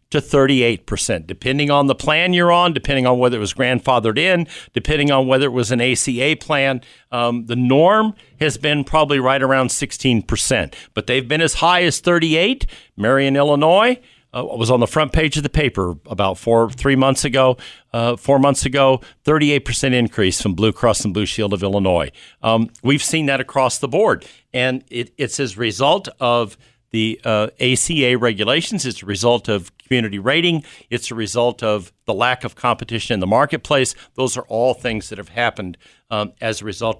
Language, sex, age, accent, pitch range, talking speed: English, male, 50-69, American, 110-145 Hz, 185 wpm